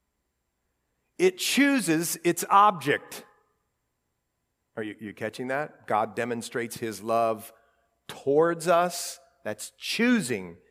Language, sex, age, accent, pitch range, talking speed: English, male, 50-69, American, 140-210 Hz, 95 wpm